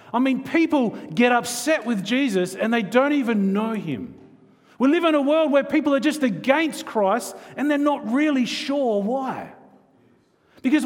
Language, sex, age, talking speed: English, male, 40-59, 170 wpm